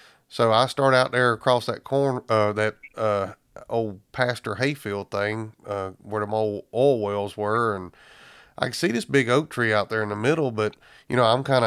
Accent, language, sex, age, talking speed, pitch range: American, English, male, 30-49, 205 wpm, 105-120 Hz